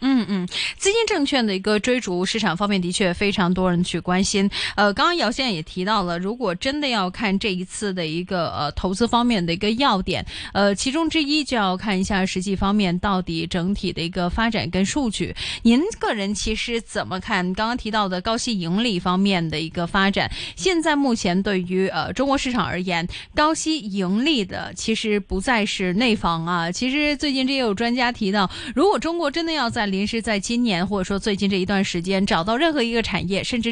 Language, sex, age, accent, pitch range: Chinese, female, 20-39, native, 190-250 Hz